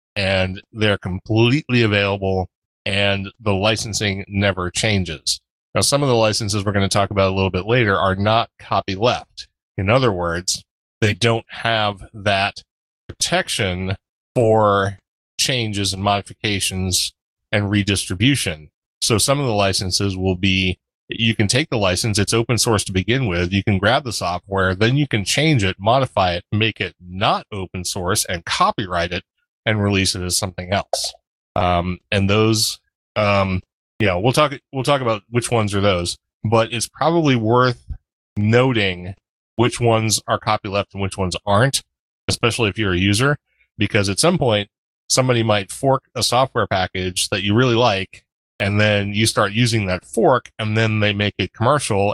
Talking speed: 165 wpm